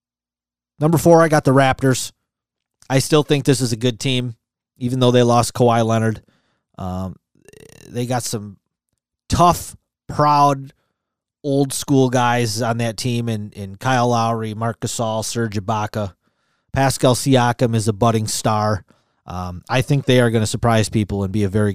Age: 30-49